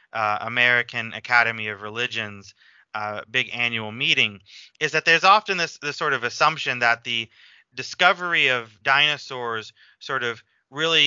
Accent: American